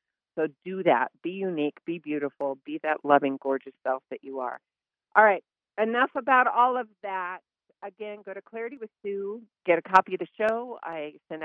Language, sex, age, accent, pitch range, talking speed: English, female, 40-59, American, 150-200 Hz, 190 wpm